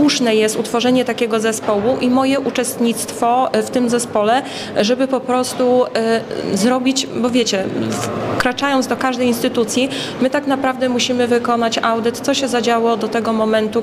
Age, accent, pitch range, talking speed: 20-39, native, 220-250 Hz, 145 wpm